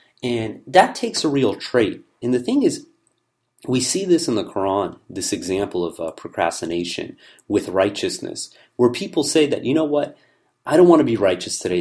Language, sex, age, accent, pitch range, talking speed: English, male, 30-49, American, 100-145 Hz, 185 wpm